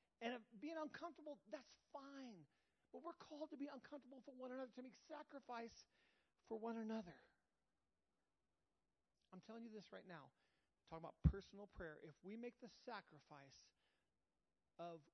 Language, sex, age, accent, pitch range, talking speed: English, male, 40-59, American, 170-240 Hz, 145 wpm